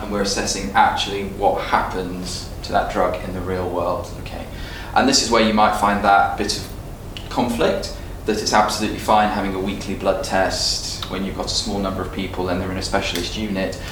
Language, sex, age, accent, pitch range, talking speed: English, male, 20-39, British, 90-105 Hz, 205 wpm